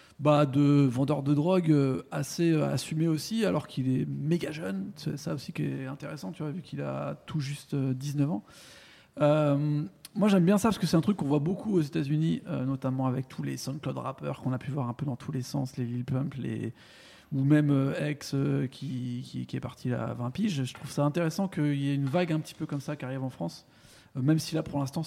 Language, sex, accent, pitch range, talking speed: French, male, French, 135-170 Hz, 245 wpm